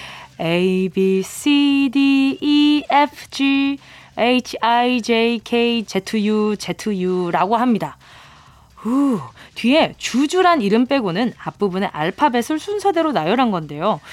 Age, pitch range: 20-39, 205-315 Hz